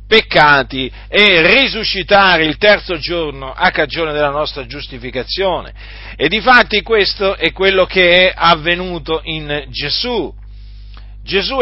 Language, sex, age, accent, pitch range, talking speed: Italian, male, 40-59, native, 140-200 Hz, 120 wpm